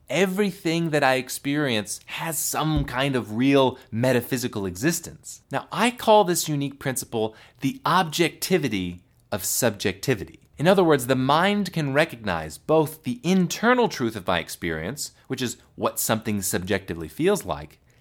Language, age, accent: English, 30-49, American